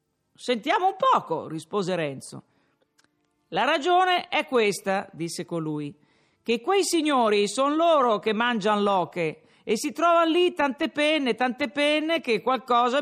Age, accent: 50-69, native